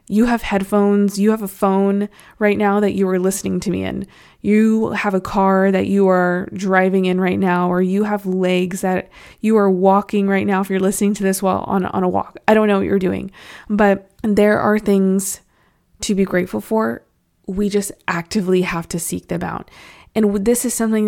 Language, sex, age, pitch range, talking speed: English, female, 20-39, 185-210 Hz, 210 wpm